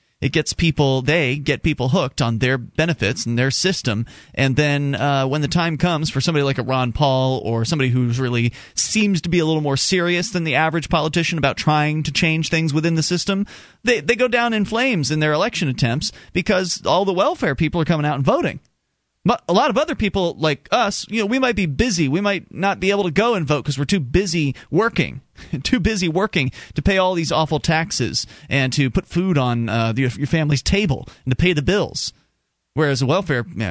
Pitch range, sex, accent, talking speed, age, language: 130-175 Hz, male, American, 220 wpm, 30-49, English